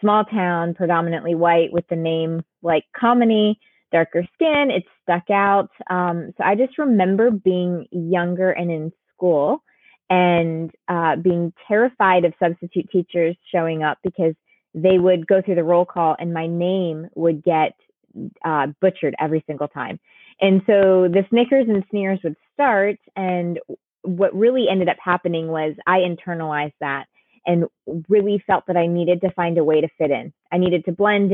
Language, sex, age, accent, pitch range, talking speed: English, female, 20-39, American, 165-195 Hz, 165 wpm